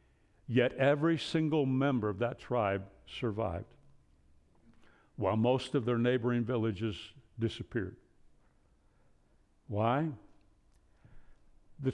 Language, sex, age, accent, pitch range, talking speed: English, male, 60-79, American, 105-140 Hz, 85 wpm